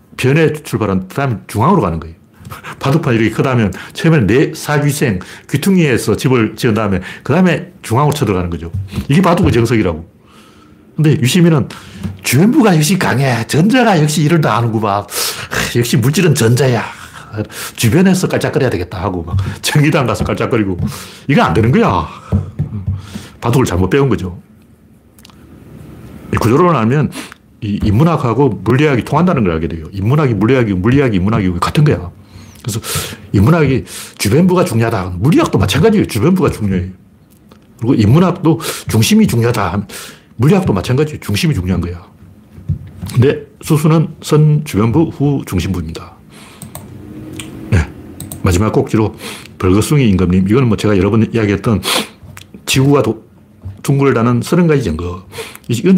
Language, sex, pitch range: Korean, male, 100-150 Hz